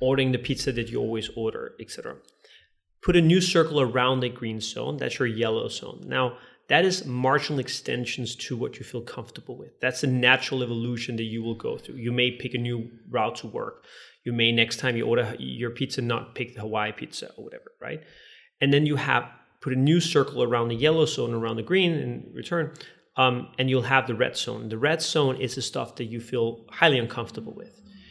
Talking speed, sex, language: 215 wpm, male, English